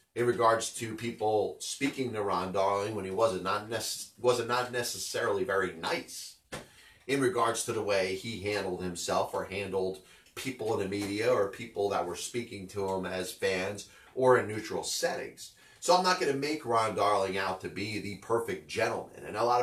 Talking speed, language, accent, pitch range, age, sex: 190 wpm, English, American, 105-130 Hz, 30-49, male